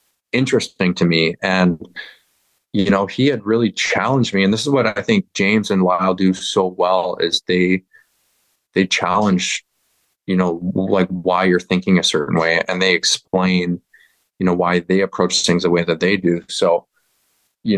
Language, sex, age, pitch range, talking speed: English, male, 20-39, 90-100 Hz, 175 wpm